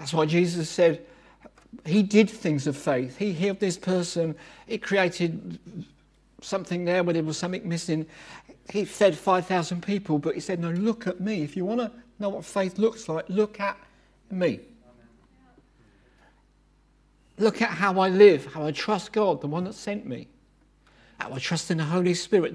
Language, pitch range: English, 160-215 Hz